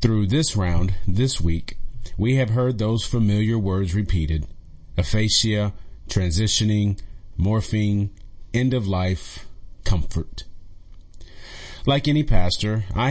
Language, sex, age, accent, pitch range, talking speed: English, male, 40-59, American, 90-115 Hz, 105 wpm